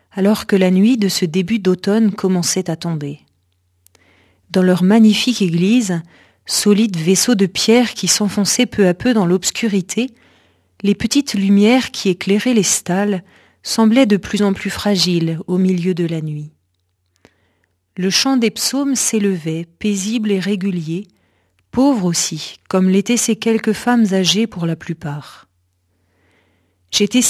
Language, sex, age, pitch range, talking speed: French, female, 40-59, 160-225 Hz, 140 wpm